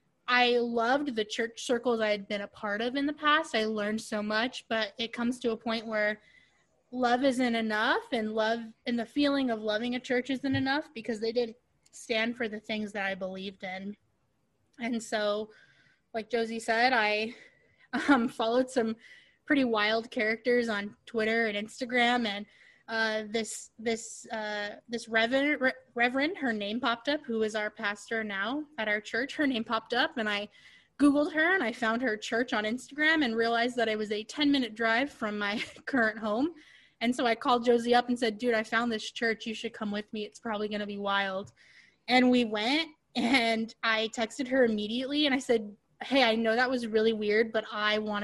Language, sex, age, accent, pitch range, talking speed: English, female, 20-39, American, 215-245 Hz, 200 wpm